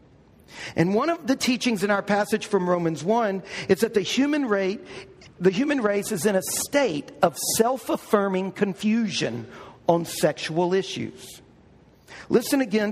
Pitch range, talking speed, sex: 175-225 Hz, 145 wpm, male